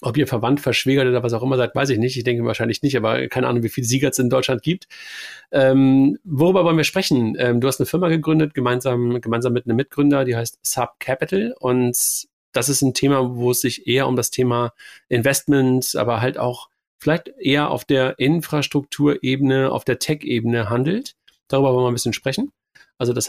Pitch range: 120-135 Hz